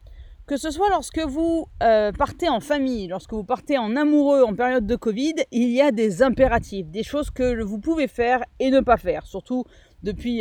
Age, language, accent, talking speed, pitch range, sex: 30-49, French, French, 200 wpm, 220-290 Hz, female